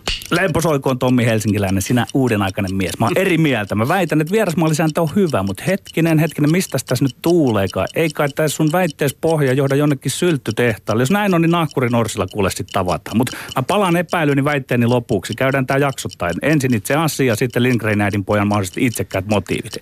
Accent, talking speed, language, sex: native, 175 wpm, Finnish, male